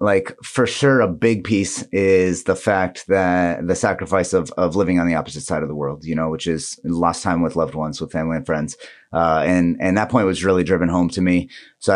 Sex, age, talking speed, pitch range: male, 30-49, 235 wpm, 85-100 Hz